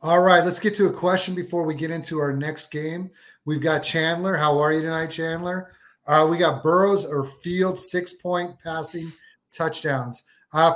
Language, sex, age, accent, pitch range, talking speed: English, male, 30-49, American, 145-165 Hz, 185 wpm